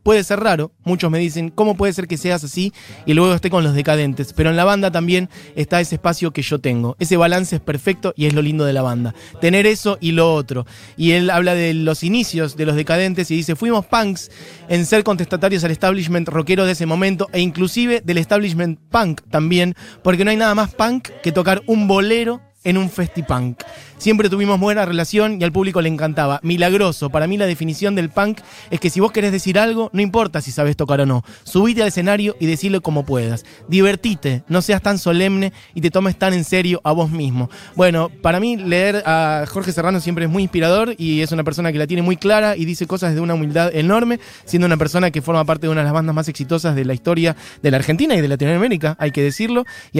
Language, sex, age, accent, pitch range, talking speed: Spanish, male, 20-39, Argentinian, 160-195 Hz, 230 wpm